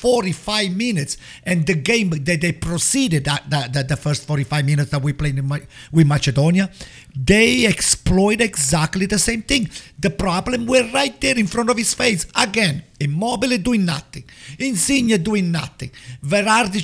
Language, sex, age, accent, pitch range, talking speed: English, male, 50-69, Italian, 145-205 Hz, 170 wpm